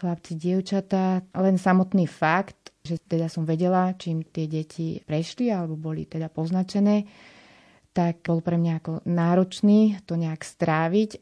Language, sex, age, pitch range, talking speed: Slovak, female, 30-49, 160-180 Hz, 140 wpm